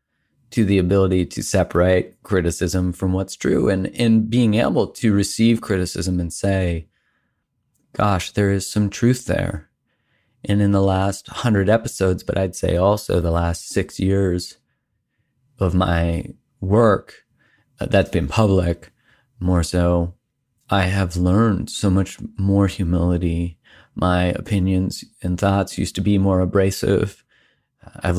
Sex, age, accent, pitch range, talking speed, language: male, 30-49, American, 90-105 Hz, 135 wpm, English